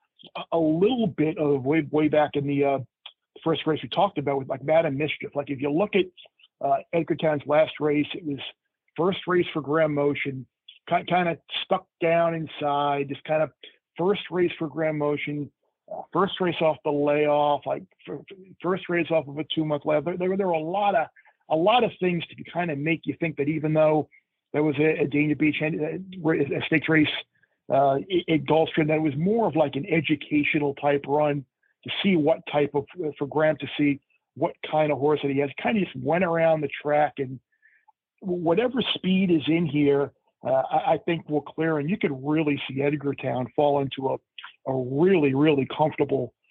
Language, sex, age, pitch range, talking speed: English, male, 40-59, 140-165 Hz, 205 wpm